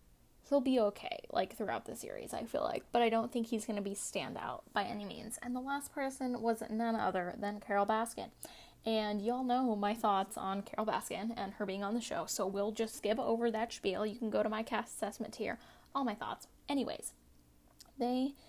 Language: English